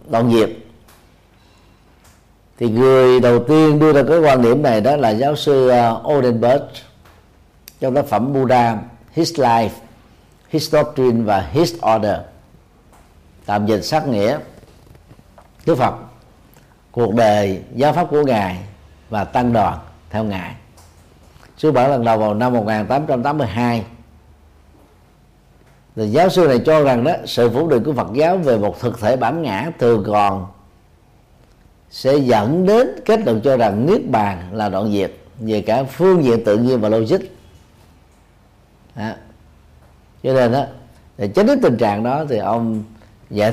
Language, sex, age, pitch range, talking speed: Vietnamese, male, 50-69, 95-135 Hz, 140 wpm